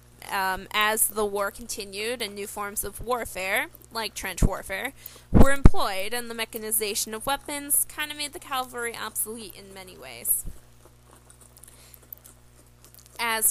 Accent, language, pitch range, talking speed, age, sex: American, English, 190-230 Hz, 135 wpm, 20-39, female